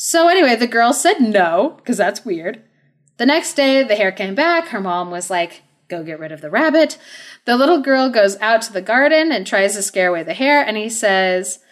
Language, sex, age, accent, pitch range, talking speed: English, female, 30-49, American, 185-290 Hz, 225 wpm